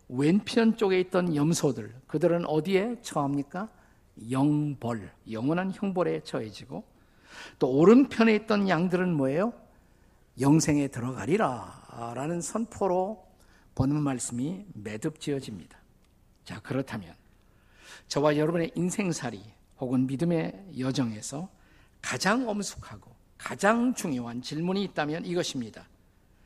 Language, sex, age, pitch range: Korean, male, 50-69, 120-170 Hz